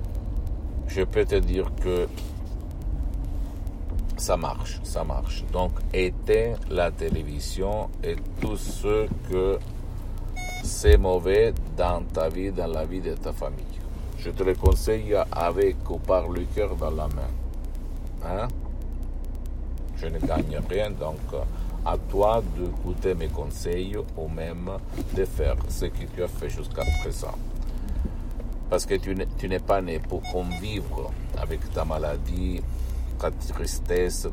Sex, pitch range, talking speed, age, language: male, 75-100 Hz, 135 wpm, 60-79, Italian